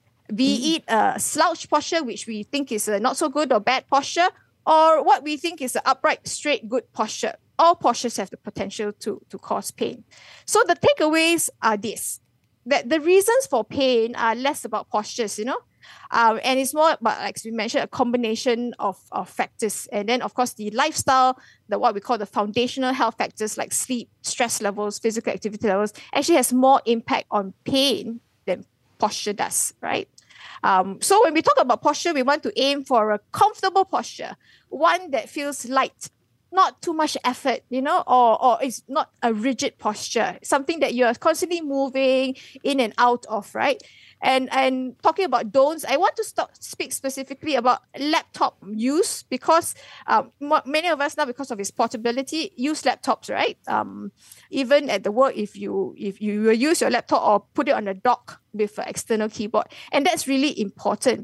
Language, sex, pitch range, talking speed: English, female, 225-300 Hz, 190 wpm